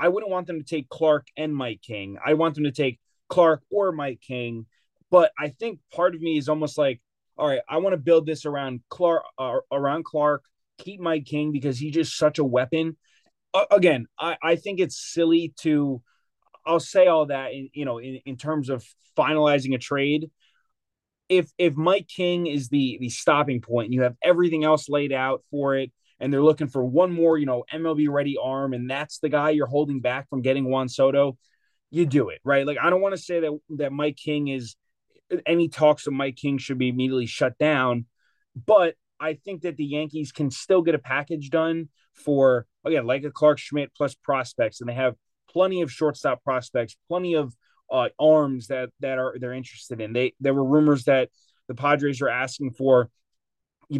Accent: American